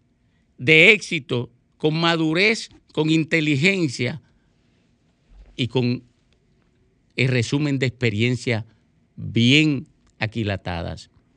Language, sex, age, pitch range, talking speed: Spanish, male, 50-69, 130-190 Hz, 75 wpm